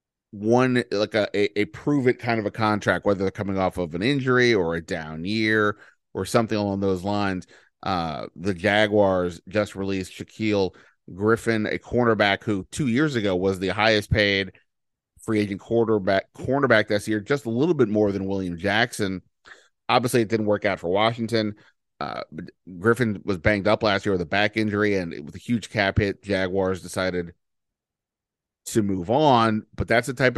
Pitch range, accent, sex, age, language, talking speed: 95-115 Hz, American, male, 30-49, English, 180 wpm